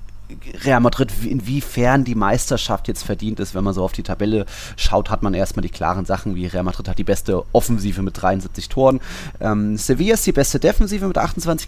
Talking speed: 200 wpm